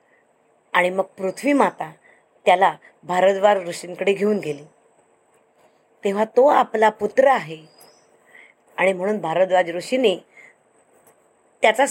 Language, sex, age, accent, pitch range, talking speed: Marathi, female, 20-39, native, 180-215 Hz, 95 wpm